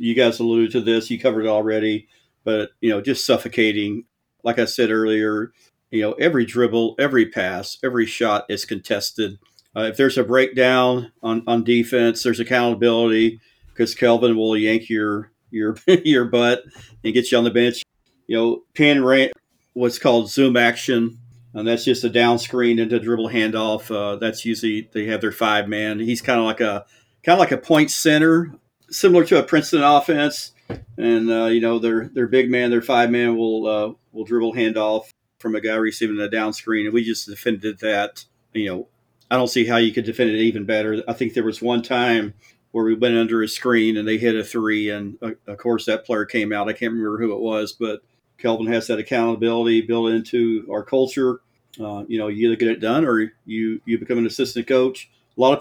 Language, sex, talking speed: English, male, 205 wpm